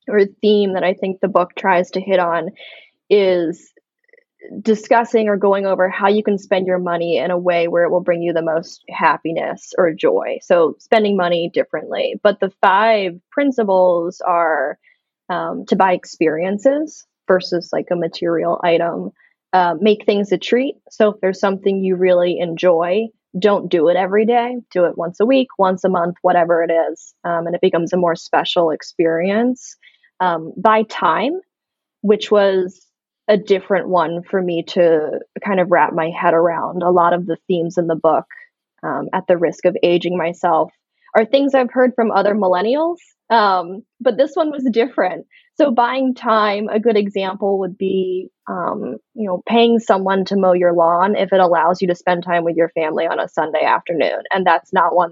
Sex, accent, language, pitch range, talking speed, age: female, American, English, 175-220 Hz, 185 wpm, 20-39